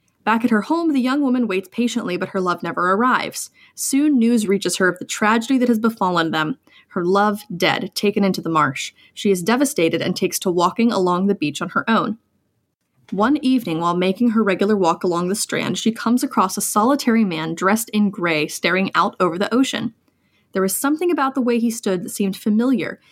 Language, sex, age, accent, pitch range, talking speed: English, female, 20-39, American, 185-255 Hz, 210 wpm